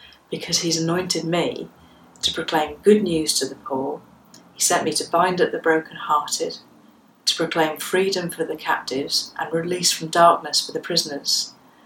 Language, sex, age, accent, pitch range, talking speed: English, female, 40-59, British, 155-190 Hz, 160 wpm